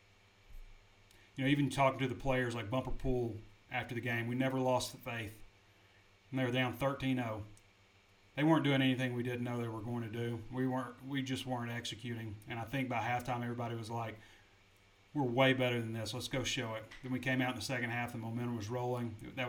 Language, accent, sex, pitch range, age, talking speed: English, American, male, 110-130 Hz, 30-49, 220 wpm